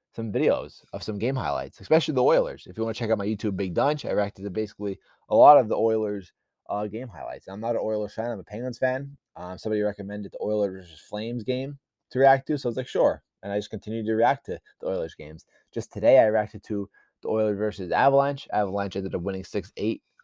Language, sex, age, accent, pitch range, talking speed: English, male, 20-39, American, 100-130 Hz, 235 wpm